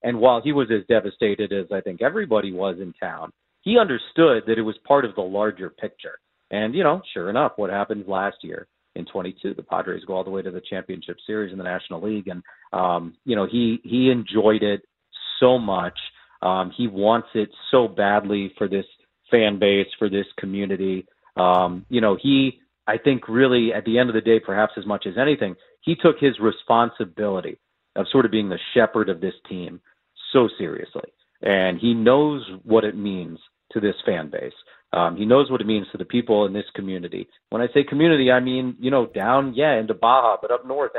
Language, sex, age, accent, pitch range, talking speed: English, male, 40-59, American, 100-120 Hz, 205 wpm